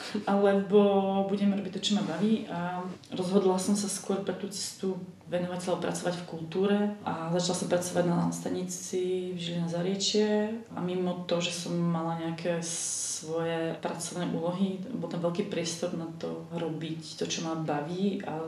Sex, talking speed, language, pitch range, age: female, 165 wpm, Czech, 165-190 Hz, 30-49